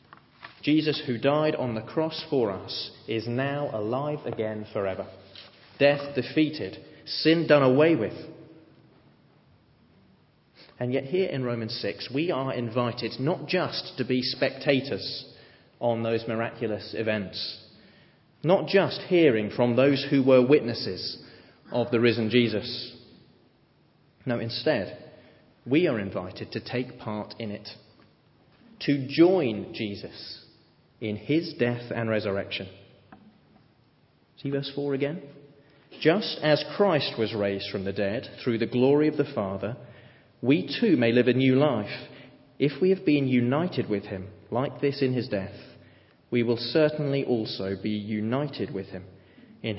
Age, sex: 30-49, male